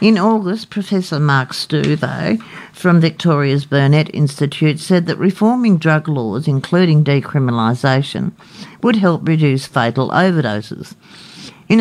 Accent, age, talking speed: Australian, 50-69, 110 wpm